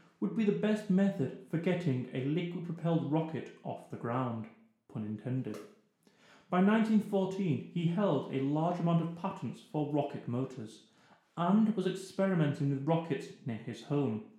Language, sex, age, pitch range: English, male, 30-49, 130-190 Hz